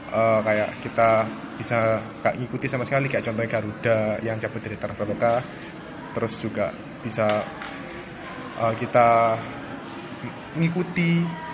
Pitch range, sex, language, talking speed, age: 115-140 Hz, male, Indonesian, 110 wpm, 20-39